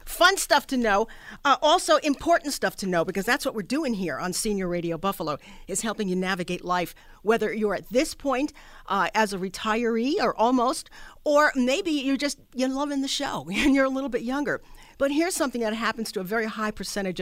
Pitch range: 175-255 Hz